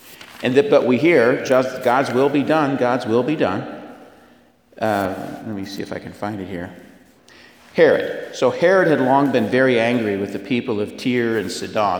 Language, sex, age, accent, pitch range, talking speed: English, male, 50-69, American, 105-135 Hz, 190 wpm